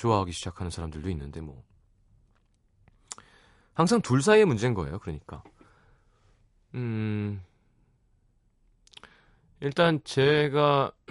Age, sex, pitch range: 30-49, male, 100-150 Hz